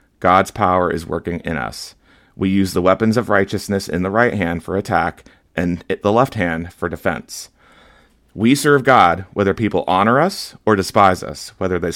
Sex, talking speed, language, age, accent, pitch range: male, 180 wpm, English, 30-49, American, 90-110 Hz